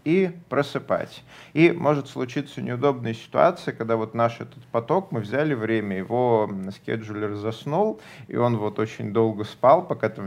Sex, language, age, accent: male, Russian, 30-49, native